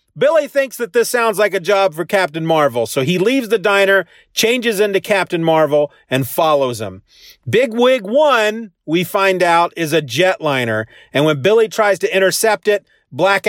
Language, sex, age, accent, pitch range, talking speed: English, male, 40-59, American, 150-210 Hz, 180 wpm